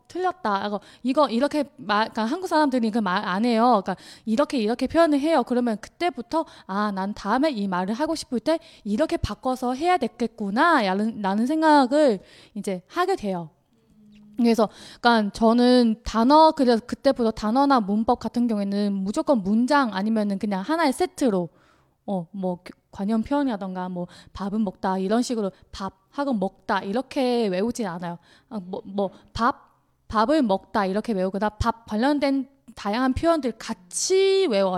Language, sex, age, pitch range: Chinese, female, 20-39, 200-280 Hz